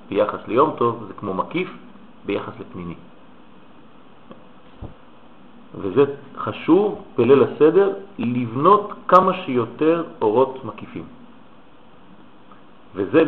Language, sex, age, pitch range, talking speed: French, male, 50-69, 110-160 Hz, 80 wpm